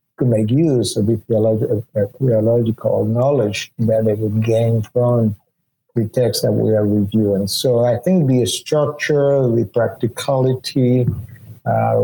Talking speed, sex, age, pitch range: 130 wpm, male, 50-69, 110-135 Hz